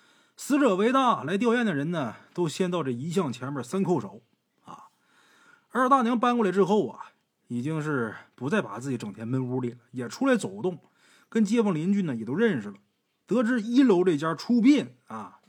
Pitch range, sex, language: 135-205 Hz, male, Chinese